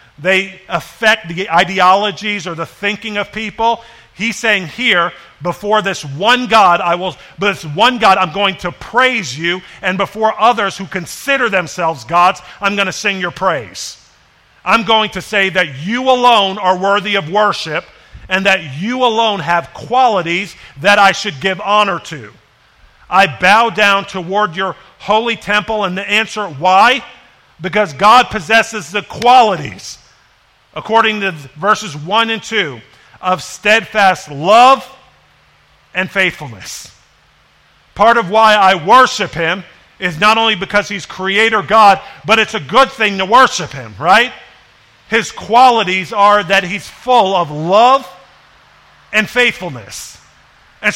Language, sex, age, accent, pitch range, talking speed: English, male, 50-69, American, 185-220 Hz, 145 wpm